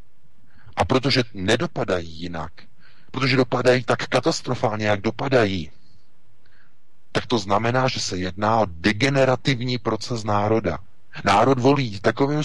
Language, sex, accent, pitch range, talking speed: Czech, male, native, 95-125 Hz, 110 wpm